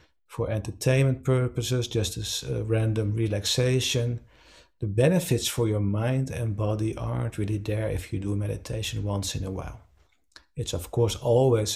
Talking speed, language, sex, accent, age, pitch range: 155 wpm, English, male, Dutch, 50-69, 100-125 Hz